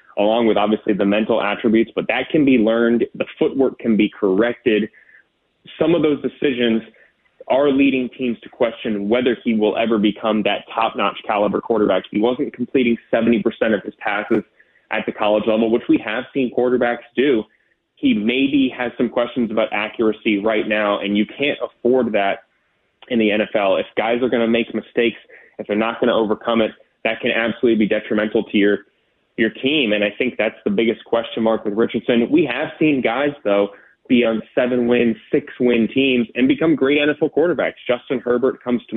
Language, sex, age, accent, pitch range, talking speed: English, male, 20-39, American, 110-125 Hz, 185 wpm